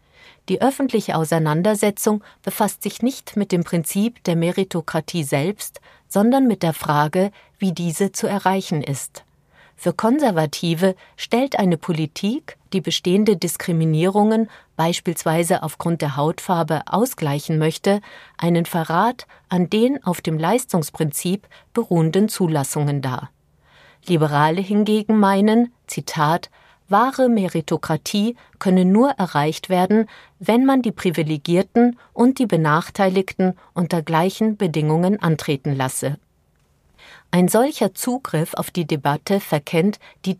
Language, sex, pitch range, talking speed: German, female, 160-210 Hz, 110 wpm